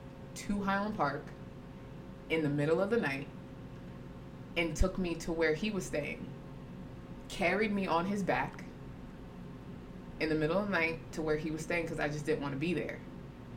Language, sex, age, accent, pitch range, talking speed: English, female, 20-39, American, 145-165 Hz, 180 wpm